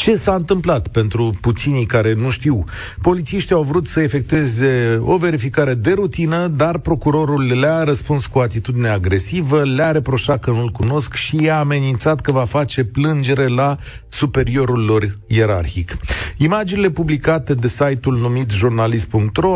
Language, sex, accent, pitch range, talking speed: Romanian, male, native, 110-165 Hz, 145 wpm